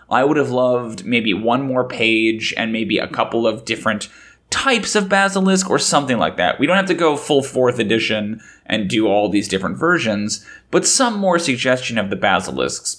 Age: 20-39